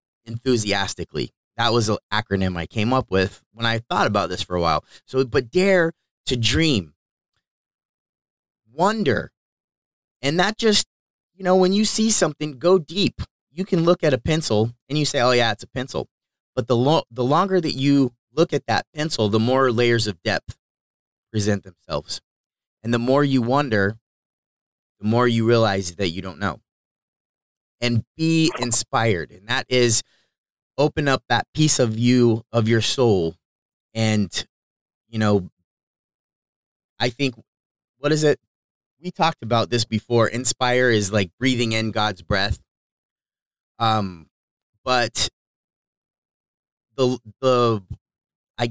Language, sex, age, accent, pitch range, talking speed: English, male, 30-49, American, 110-135 Hz, 145 wpm